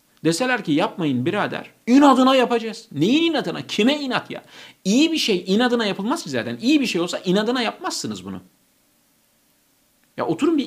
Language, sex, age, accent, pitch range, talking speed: Turkish, male, 50-69, native, 145-240 Hz, 155 wpm